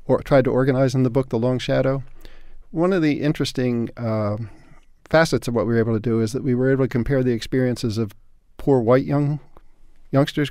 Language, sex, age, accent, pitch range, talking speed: English, male, 50-69, American, 110-130 Hz, 210 wpm